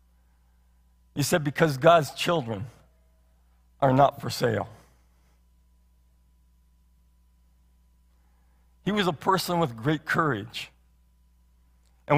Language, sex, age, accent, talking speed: English, male, 50-69, American, 85 wpm